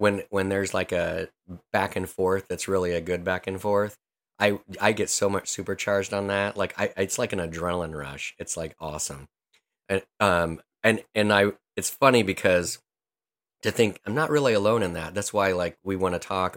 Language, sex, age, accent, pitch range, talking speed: English, male, 20-39, American, 90-115 Hz, 205 wpm